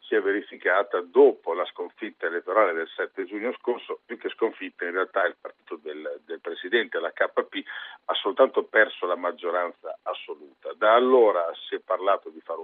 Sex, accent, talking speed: male, native, 165 wpm